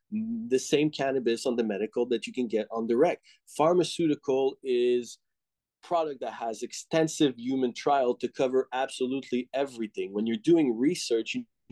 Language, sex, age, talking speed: English, male, 30-49, 150 wpm